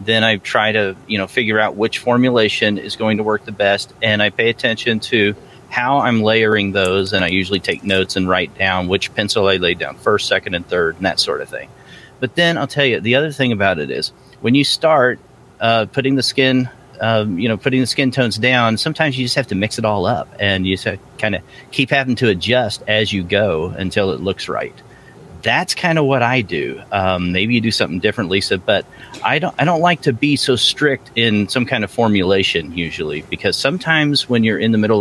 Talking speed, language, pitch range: 230 wpm, English, 105-130 Hz